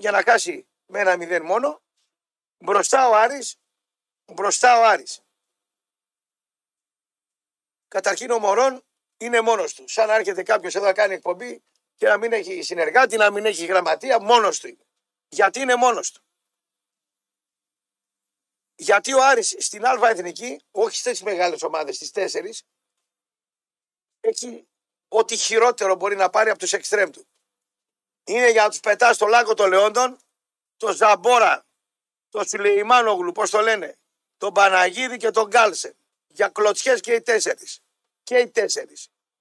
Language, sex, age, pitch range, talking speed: Greek, male, 50-69, 185-250 Hz, 145 wpm